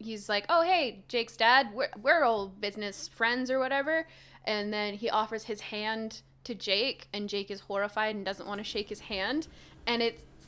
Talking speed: 195 wpm